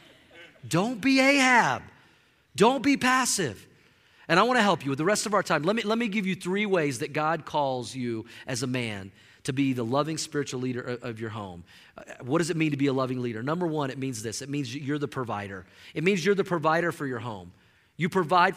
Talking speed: 230 wpm